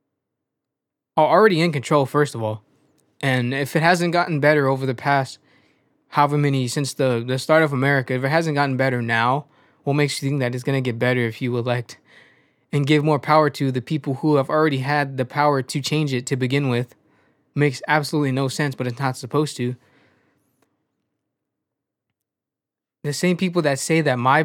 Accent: American